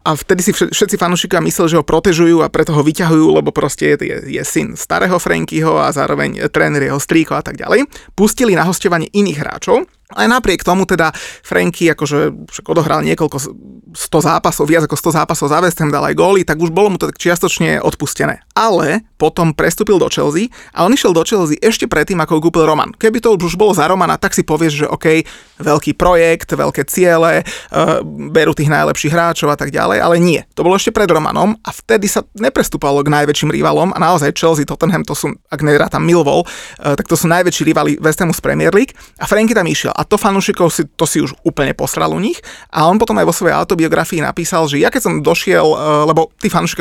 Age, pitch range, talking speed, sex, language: 30-49, 150-185 Hz, 210 wpm, male, Slovak